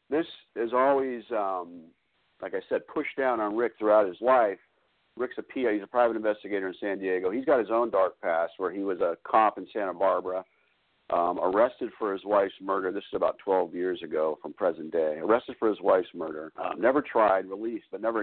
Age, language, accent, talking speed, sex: 50-69, English, American, 210 wpm, male